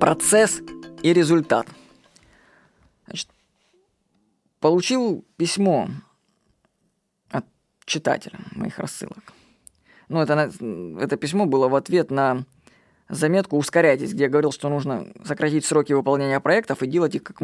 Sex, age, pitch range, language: female, 20-39, 150-205 Hz, Russian